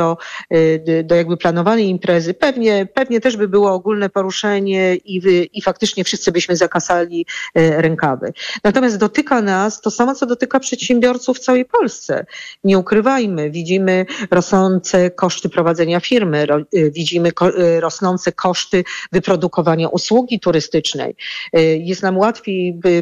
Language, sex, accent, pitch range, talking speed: Polish, female, native, 180-220 Hz, 140 wpm